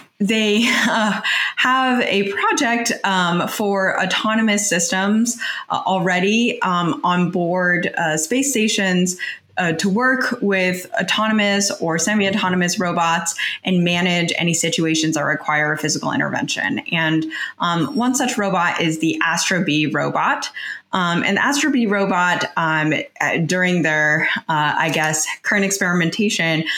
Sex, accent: female, American